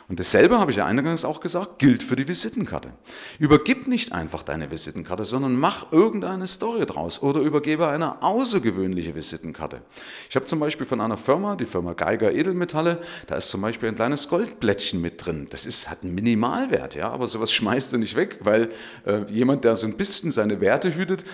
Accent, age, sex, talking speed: German, 30-49, male, 195 wpm